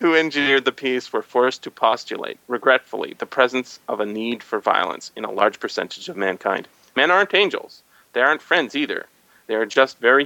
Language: English